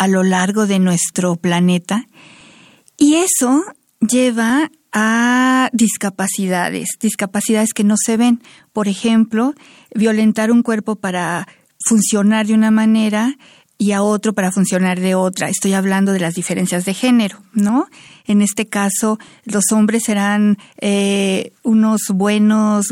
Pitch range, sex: 200-240 Hz, female